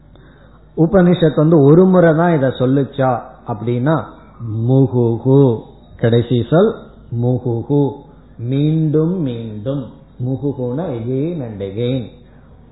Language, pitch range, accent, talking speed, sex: Tamil, 125-160 Hz, native, 70 wpm, male